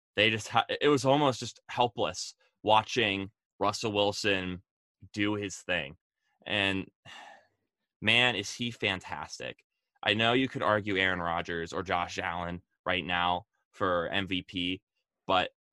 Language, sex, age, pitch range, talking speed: English, male, 20-39, 95-110 Hz, 130 wpm